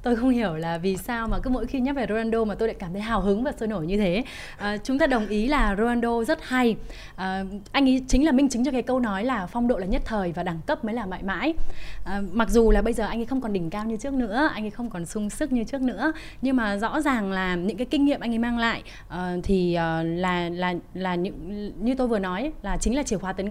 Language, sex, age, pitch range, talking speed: Vietnamese, female, 20-39, 200-260 Hz, 290 wpm